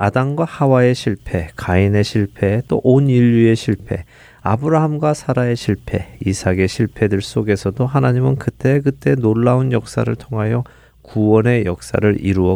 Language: Korean